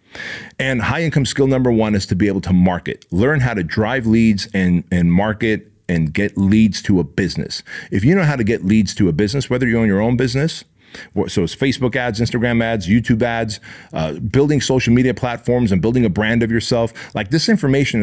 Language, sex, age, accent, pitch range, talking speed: English, male, 40-59, American, 100-125 Hz, 215 wpm